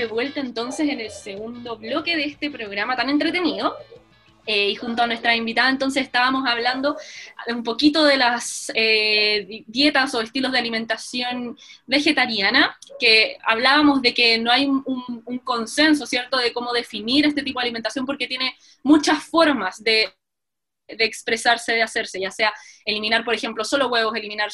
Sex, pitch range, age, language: female, 220-280 Hz, 20-39, Romanian